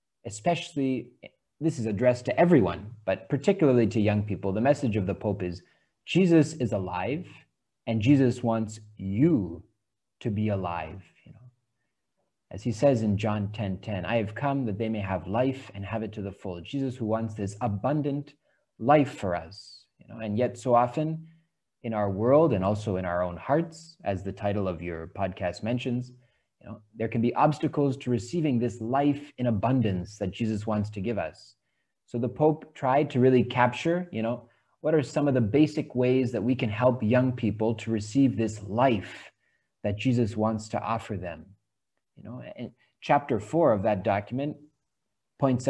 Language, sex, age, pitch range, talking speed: Filipino, male, 30-49, 105-135 Hz, 180 wpm